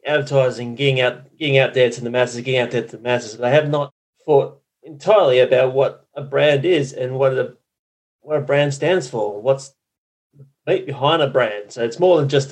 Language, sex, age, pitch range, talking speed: English, male, 30-49, 120-145 Hz, 200 wpm